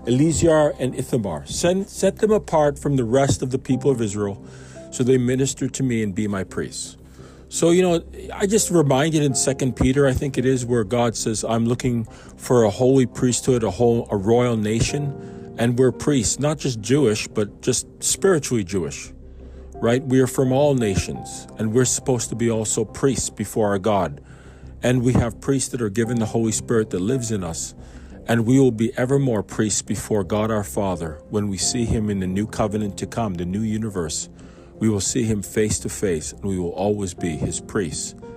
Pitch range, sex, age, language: 105-140 Hz, male, 40-59, English